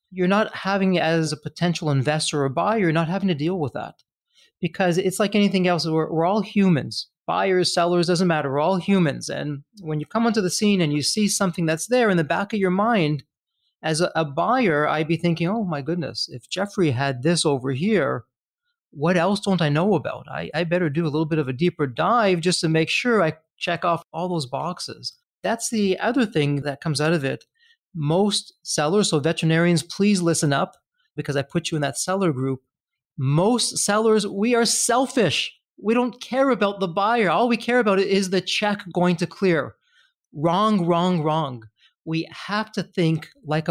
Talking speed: 200 wpm